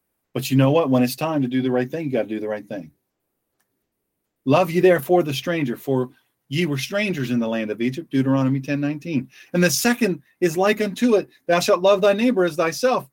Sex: male